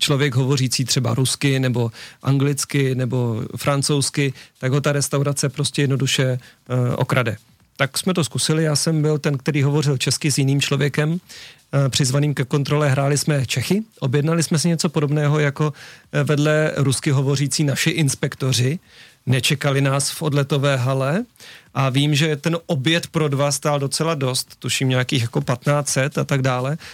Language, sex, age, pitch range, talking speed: Czech, male, 40-59, 135-150 Hz, 160 wpm